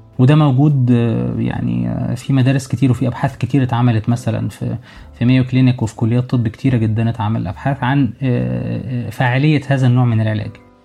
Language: Arabic